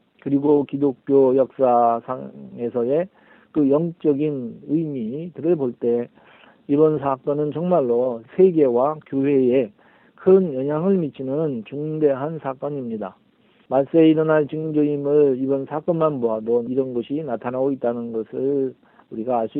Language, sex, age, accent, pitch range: Korean, male, 40-59, native, 130-155 Hz